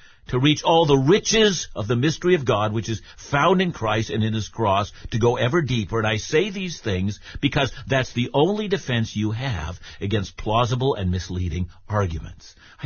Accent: American